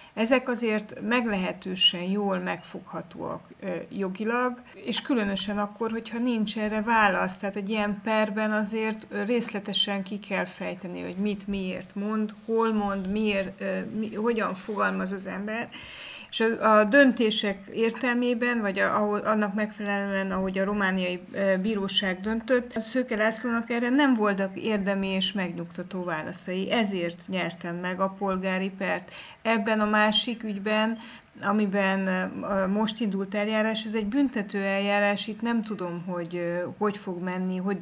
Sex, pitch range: female, 185-220 Hz